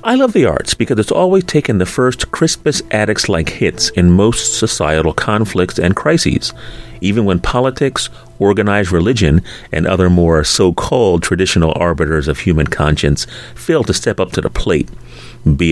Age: 30-49